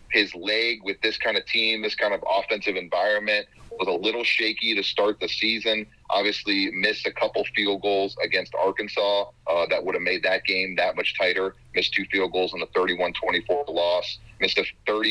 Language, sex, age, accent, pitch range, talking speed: English, male, 30-49, American, 105-135 Hz, 185 wpm